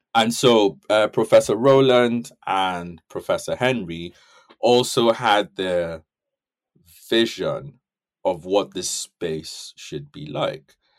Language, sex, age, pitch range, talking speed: English, male, 30-49, 85-115 Hz, 105 wpm